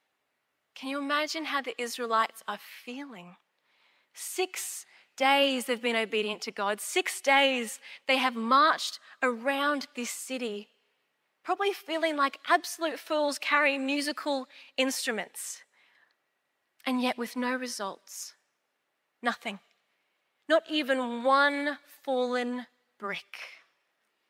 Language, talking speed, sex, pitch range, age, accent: English, 105 wpm, female, 215-275 Hz, 20-39, Australian